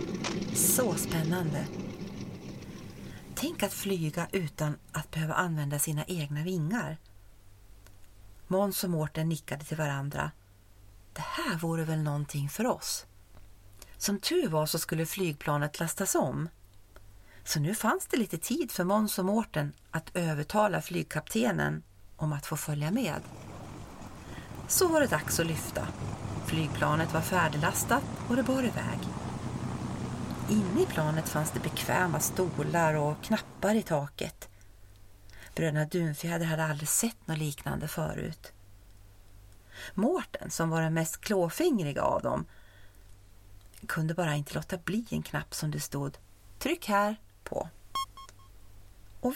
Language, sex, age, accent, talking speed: Swedish, female, 40-59, native, 130 wpm